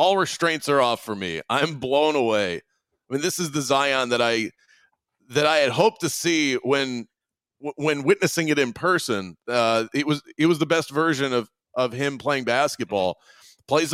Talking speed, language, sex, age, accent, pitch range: 185 wpm, English, male, 30-49, American, 120-150 Hz